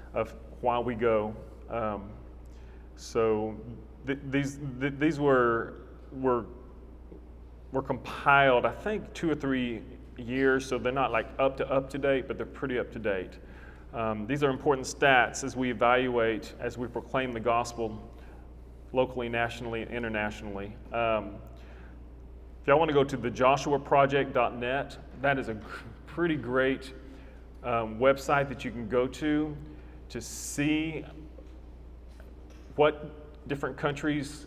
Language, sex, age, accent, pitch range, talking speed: English, male, 30-49, American, 105-135 Hz, 130 wpm